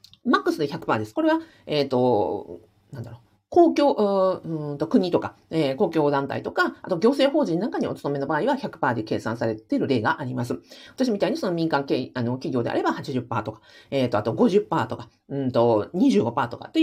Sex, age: female, 40-59